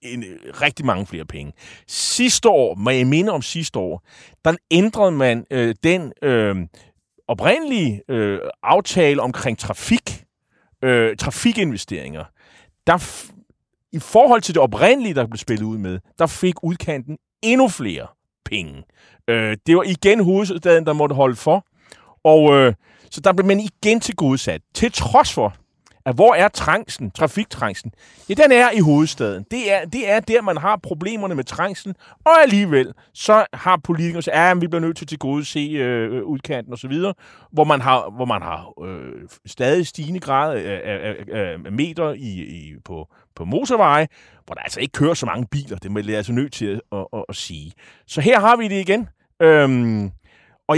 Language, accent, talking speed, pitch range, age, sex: Danish, native, 175 wpm, 115-185 Hz, 30-49, male